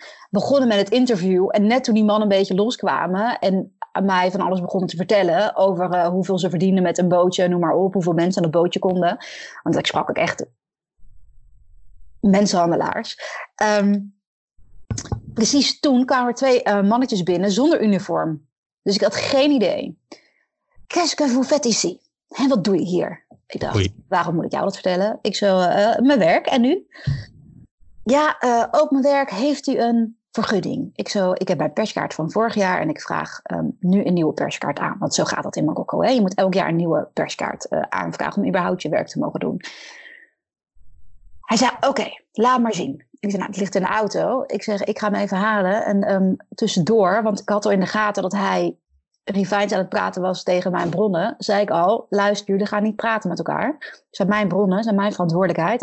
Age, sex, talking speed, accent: 30-49, female, 205 wpm, Dutch